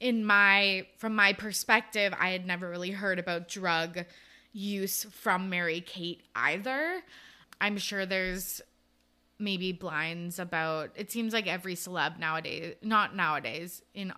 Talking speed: 135 wpm